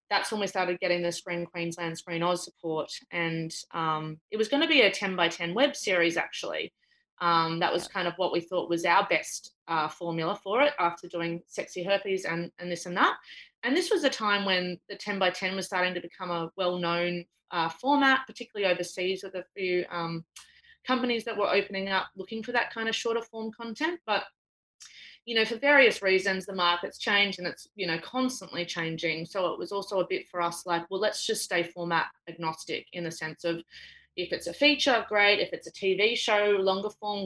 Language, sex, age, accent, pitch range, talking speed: English, female, 20-39, Australian, 170-215 Hz, 215 wpm